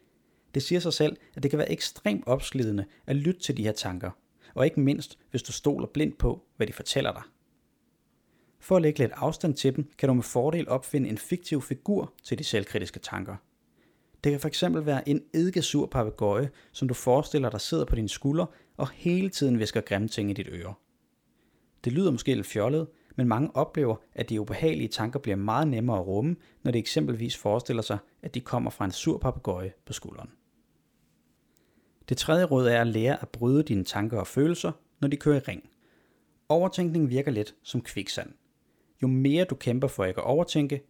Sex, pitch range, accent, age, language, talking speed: male, 110-150 Hz, native, 30-49, Danish, 190 wpm